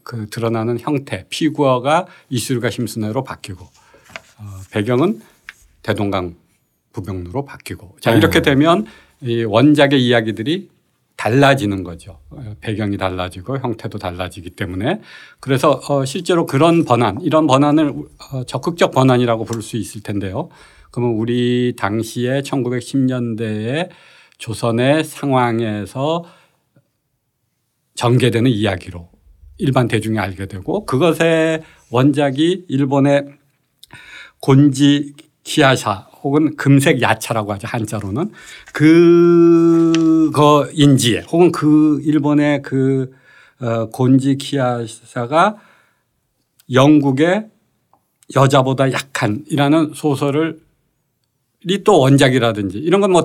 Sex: male